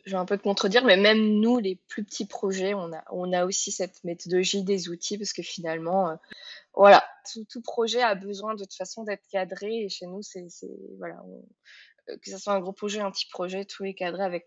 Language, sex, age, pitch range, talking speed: French, female, 20-39, 180-225 Hz, 235 wpm